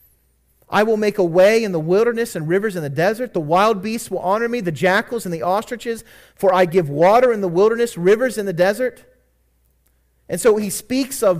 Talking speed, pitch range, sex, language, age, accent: 210 wpm, 175-250 Hz, male, English, 40-59, American